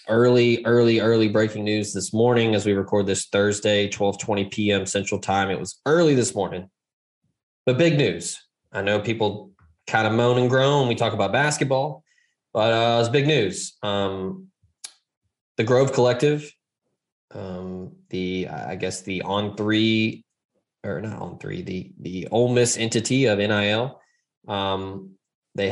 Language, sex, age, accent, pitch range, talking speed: English, male, 20-39, American, 95-120 Hz, 155 wpm